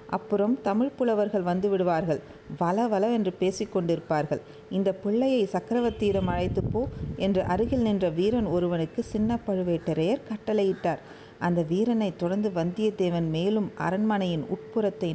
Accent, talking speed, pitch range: native, 115 wpm, 170-210 Hz